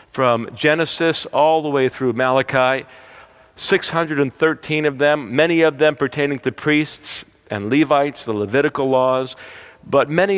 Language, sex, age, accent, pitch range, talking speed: English, male, 50-69, American, 140-190 Hz, 135 wpm